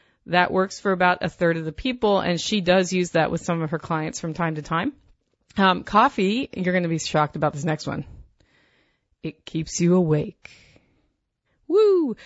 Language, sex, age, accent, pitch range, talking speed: English, female, 30-49, American, 160-195 Hz, 190 wpm